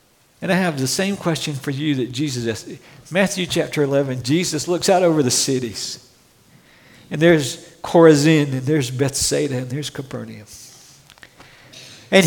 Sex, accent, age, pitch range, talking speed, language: male, American, 60-79, 130-175 Hz, 145 wpm, English